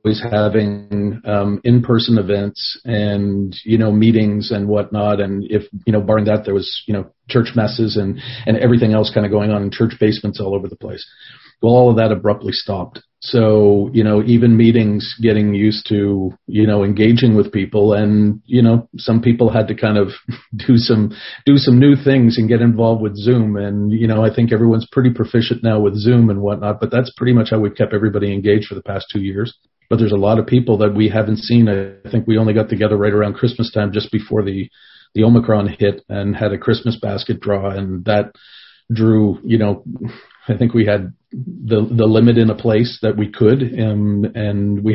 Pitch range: 105-115 Hz